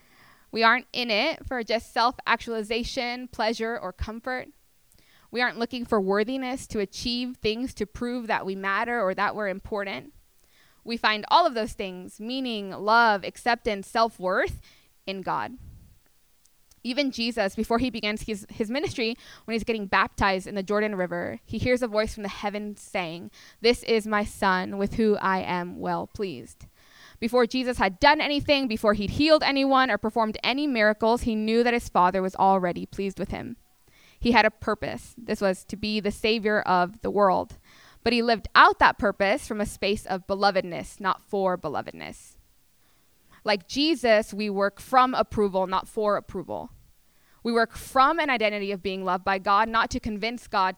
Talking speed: 170 wpm